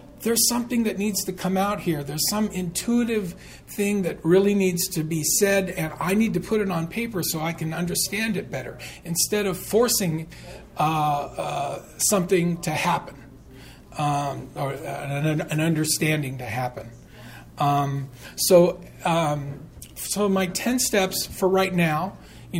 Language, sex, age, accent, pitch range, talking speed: English, male, 40-59, American, 150-190 Hz, 155 wpm